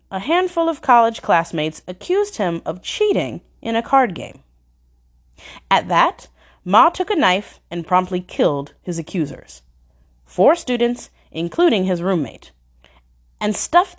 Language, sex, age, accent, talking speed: English, female, 30-49, American, 135 wpm